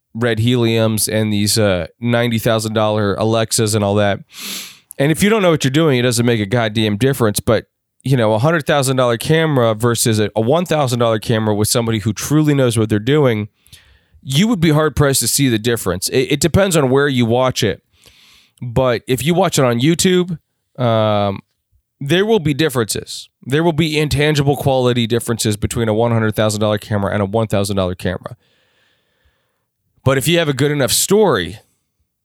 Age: 20-39